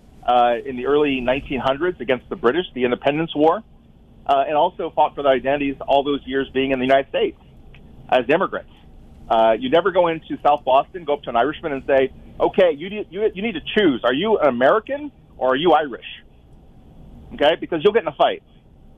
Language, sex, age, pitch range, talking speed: English, male, 40-59, 130-180 Hz, 200 wpm